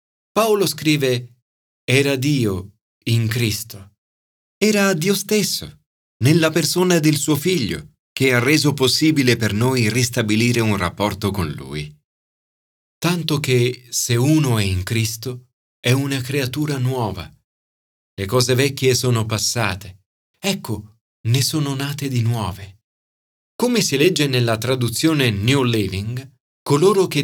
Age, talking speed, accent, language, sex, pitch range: 40-59, 125 wpm, native, Italian, male, 110-160 Hz